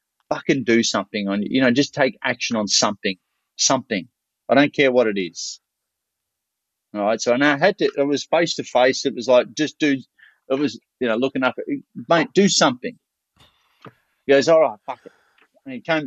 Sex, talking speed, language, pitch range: male, 195 wpm, English, 110-160 Hz